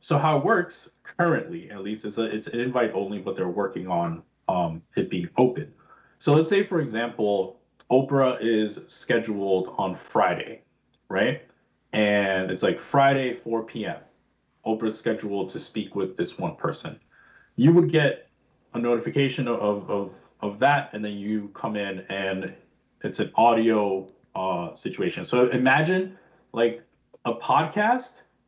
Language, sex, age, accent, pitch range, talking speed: English, male, 30-49, American, 110-145 Hz, 150 wpm